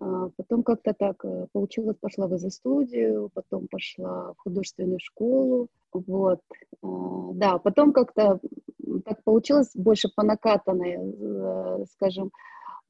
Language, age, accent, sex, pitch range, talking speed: Russian, 30-49, native, female, 190-240 Hz, 100 wpm